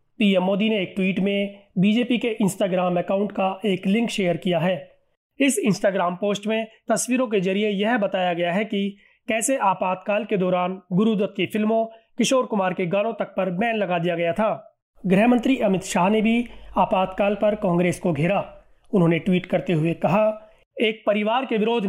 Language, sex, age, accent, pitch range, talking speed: Hindi, male, 30-49, native, 190-220 Hz, 180 wpm